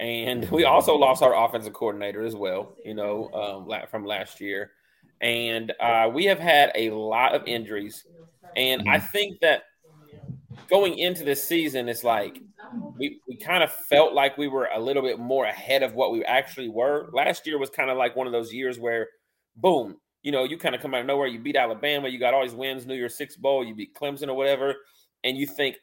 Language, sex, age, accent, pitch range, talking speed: English, male, 30-49, American, 120-155 Hz, 215 wpm